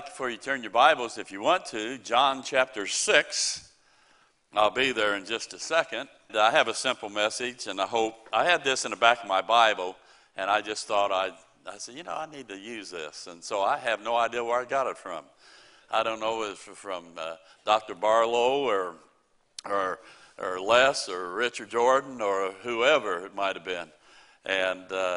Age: 60-79